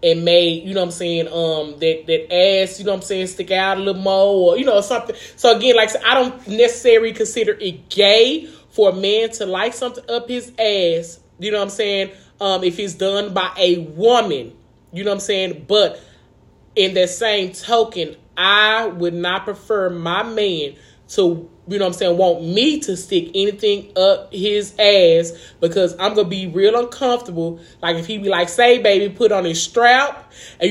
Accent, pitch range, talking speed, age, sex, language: American, 180-220 Hz, 205 wpm, 30-49, male, English